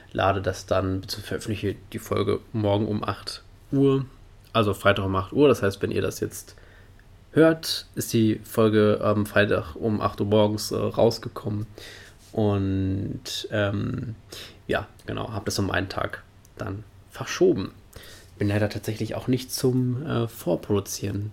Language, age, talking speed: German, 20-39, 145 wpm